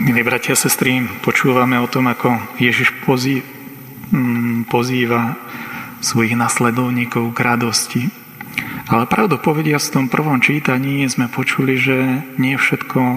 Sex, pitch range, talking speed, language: male, 120-135 Hz, 120 wpm, Slovak